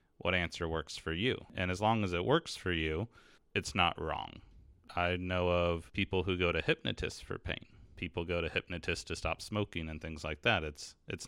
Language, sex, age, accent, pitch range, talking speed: English, male, 30-49, American, 80-95 Hz, 205 wpm